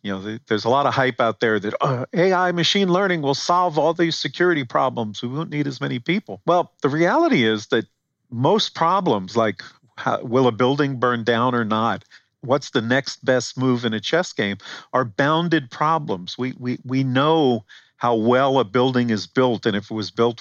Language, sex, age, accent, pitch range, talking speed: English, male, 50-69, American, 115-145 Hz, 200 wpm